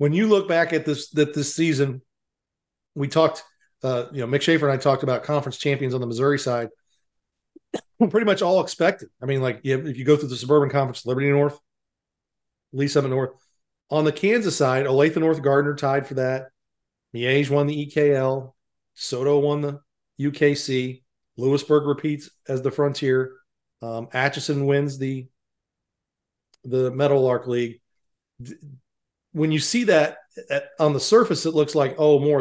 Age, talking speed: 40-59, 170 wpm